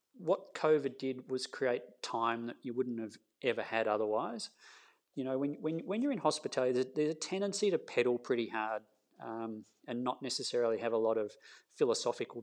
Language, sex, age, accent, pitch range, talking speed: English, male, 40-59, Australian, 115-145 Hz, 185 wpm